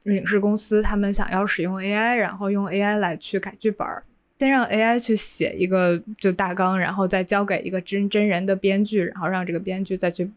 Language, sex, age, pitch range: Chinese, female, 20-39, 185-215 Hz